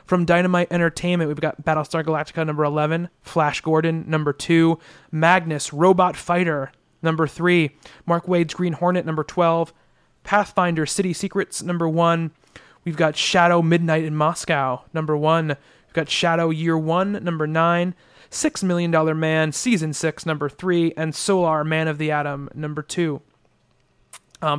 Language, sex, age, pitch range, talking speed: English, male, 30-49, 155-175 Hz, 150 wpm